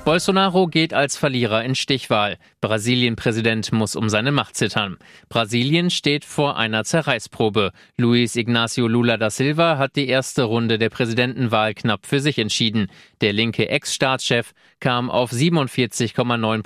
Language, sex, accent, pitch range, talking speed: German, male, German, 110-135 Hz, 135 wpm